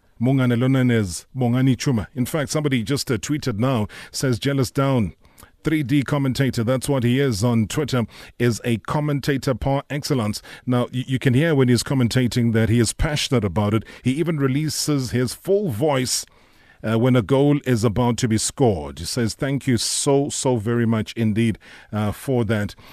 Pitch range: 110-140 Hz